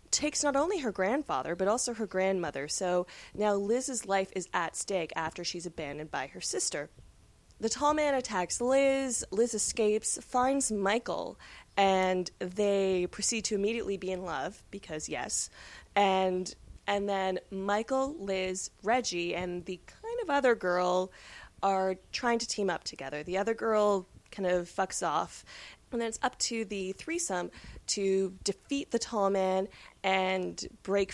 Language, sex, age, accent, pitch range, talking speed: English, female, 20-39, American, 180-230 Hz, 155 wpm